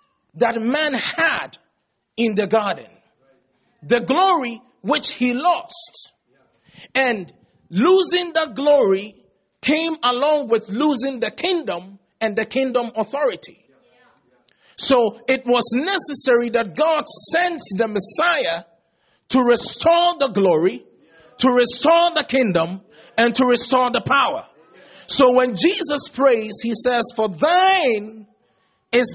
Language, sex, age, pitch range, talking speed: English, male, 40-59, 225-300 Hz, 115 wpm